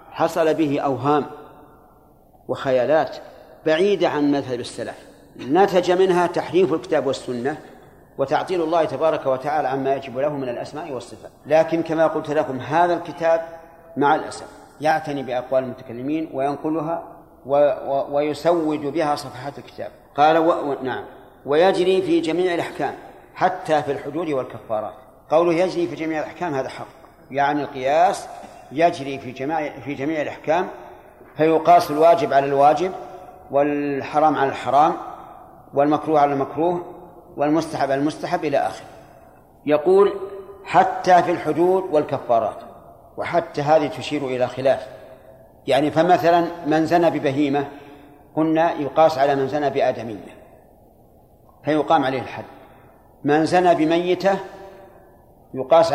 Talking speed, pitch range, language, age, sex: 115 wpm, 140-170 Hz, Arabic, 40-59, male